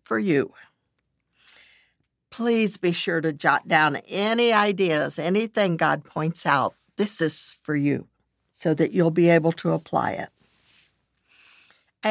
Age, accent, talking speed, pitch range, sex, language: 60-79, American, 135 wpm, 155-205 Hz, female, English